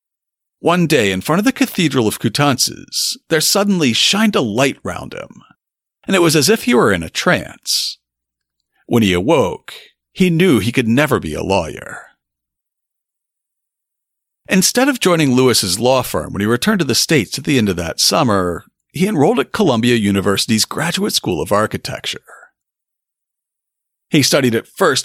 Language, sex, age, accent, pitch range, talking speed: English, male, 50-69, American, 115-190 Hz, 165 wpm